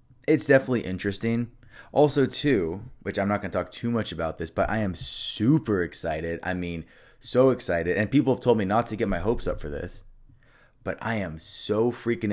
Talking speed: 200 wpm